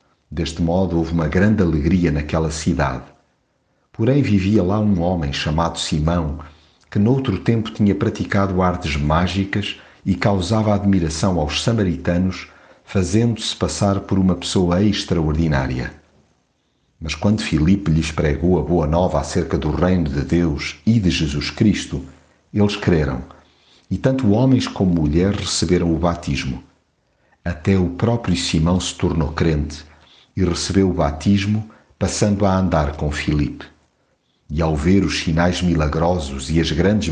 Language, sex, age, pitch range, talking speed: Portuguese, male, 50-69, 80-100 Hz, 135 wpm